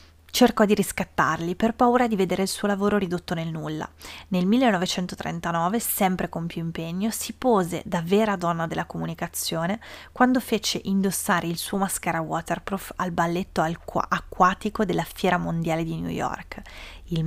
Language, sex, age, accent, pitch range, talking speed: Italian, female, 20-39, native, 170-215 Hz, 150 wpm